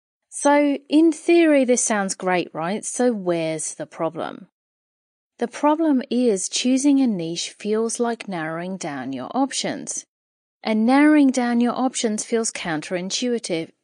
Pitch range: 175-240 Hz